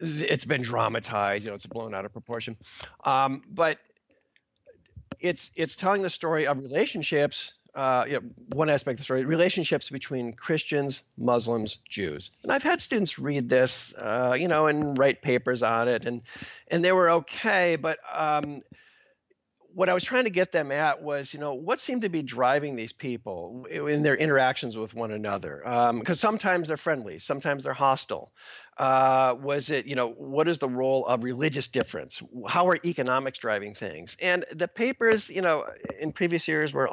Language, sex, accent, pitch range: English, male, American, 120-160 Hz